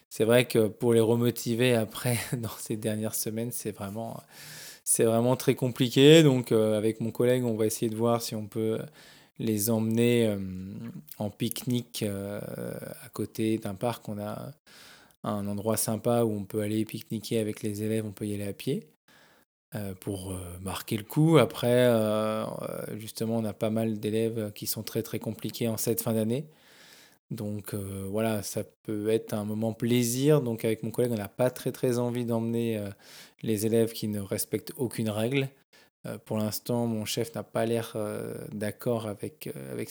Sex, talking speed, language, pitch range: male, 175 wpm, French, 105-120 Hz